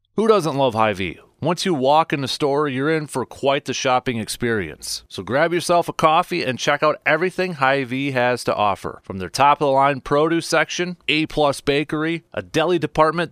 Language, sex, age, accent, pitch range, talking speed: English, male, 30-49, American, 105-160 Hz, 185 wpm